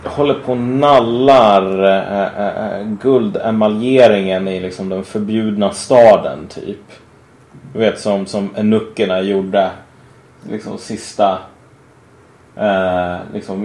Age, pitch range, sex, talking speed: 30-49, 100-135 Hz, male, 105 wpm